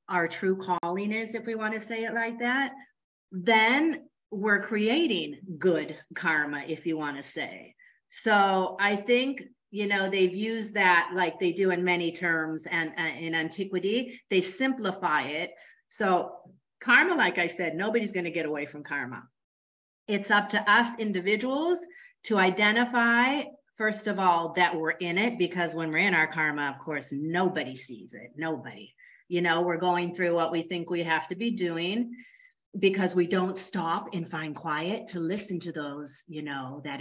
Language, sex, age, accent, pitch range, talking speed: English, female, 40-59, American, 165-225 Hz, 175 wpm